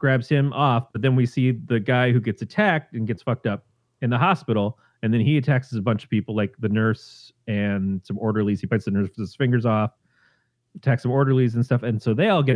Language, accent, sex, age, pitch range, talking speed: English, American, male, 30-49, 115-140 Hz, 240 wpm